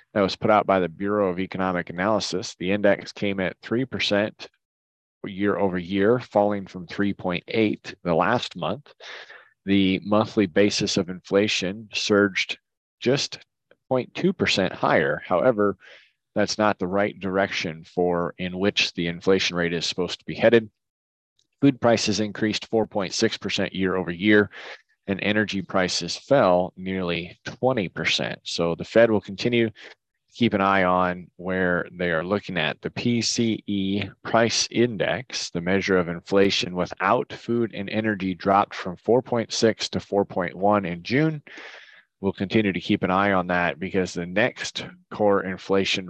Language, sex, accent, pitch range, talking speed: English, male, American, 90-105 Hz, 140 wpm